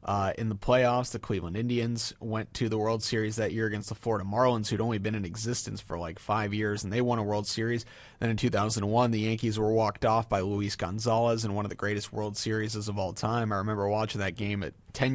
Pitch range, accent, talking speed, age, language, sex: 110-130 Hz, American, 240 wpm, 30-49, English, male